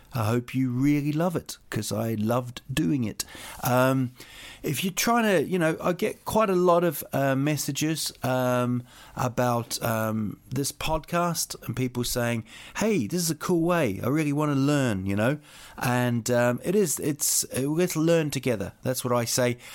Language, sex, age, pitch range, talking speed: English, male, 40-59, 115-145 Hz, 180 wpm